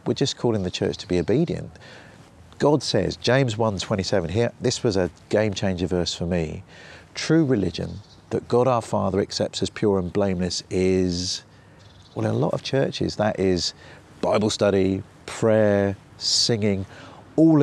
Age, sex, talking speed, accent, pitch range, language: 40-59, male, 155 wpm, British, 95-130 Hz, English